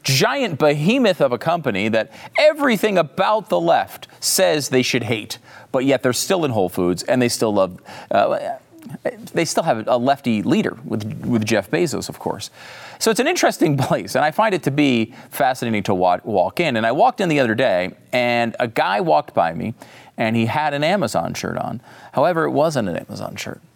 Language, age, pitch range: English, 40-59, 105-150 Hz